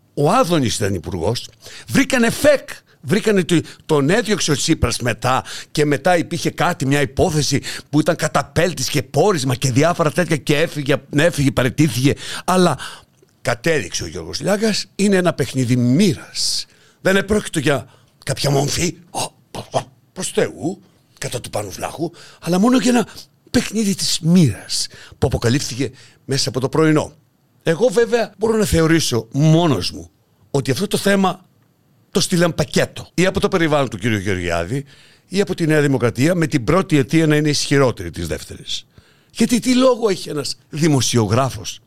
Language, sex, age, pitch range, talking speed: Greek, male, 60-79, 130-175 Hz, 155 wpm